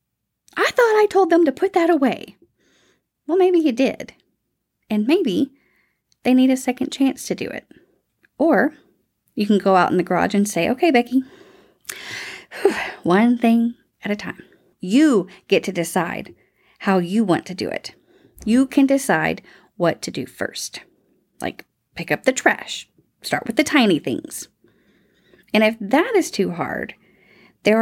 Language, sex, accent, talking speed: English, female, American, 160 wpm